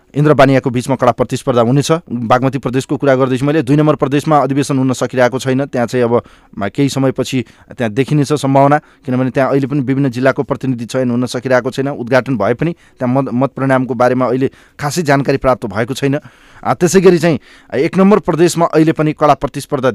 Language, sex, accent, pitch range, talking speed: English, male, Indian, 110-145 Hz, 145 wpm